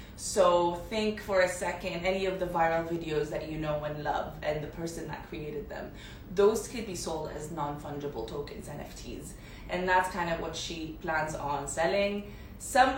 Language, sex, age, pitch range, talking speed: Arabic, female, 20-39, 155-205 Hz, 180 wpm